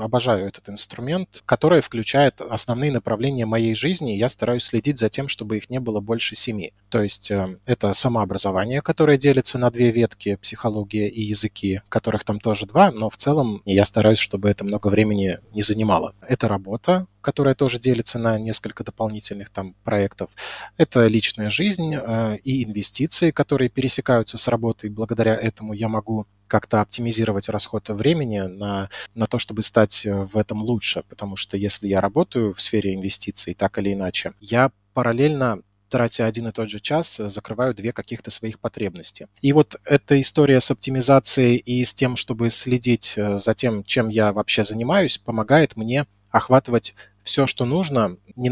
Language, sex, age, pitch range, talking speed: Russian, male, 20-39, 105-125 Hz, 160 wpm